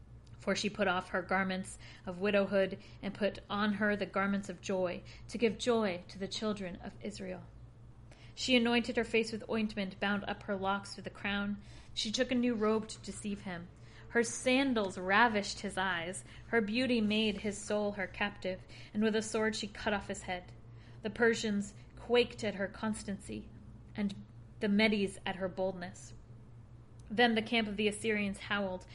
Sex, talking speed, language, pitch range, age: female, 175 wpm, English, 185-220 Hz, 40-59